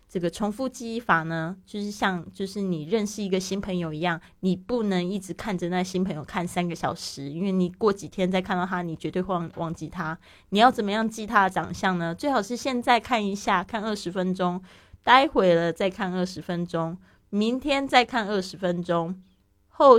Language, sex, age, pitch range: Chinese, female, 20-39, 175-215 Hz